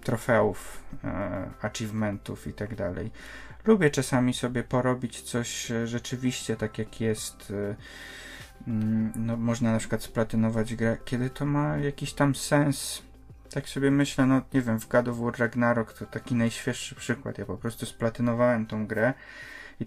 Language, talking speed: Polish, 140 wpm